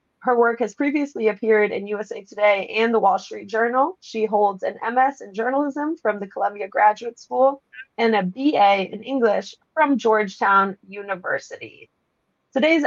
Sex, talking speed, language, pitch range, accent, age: female, 155 wpm, English, 200-260 Hz, American, 20-39